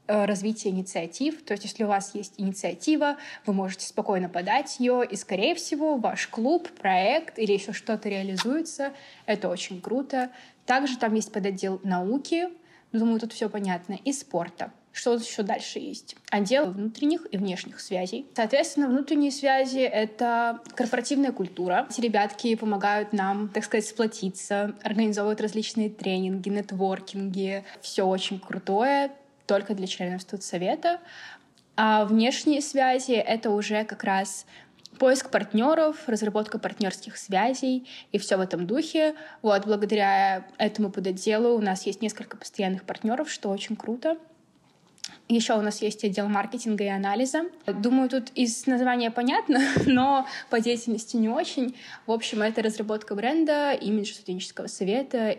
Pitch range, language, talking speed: 200-260 Hz, Russian, 140 wpm